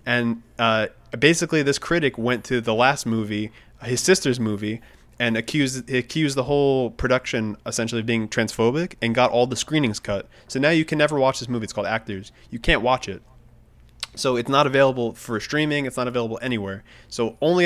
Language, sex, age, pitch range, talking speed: English, male, 20-39, 110-130 Hz, 190 wpm